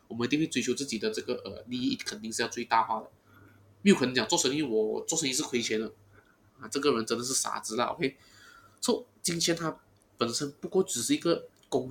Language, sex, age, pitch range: Chinese, male, 20-39, 115-170 Hz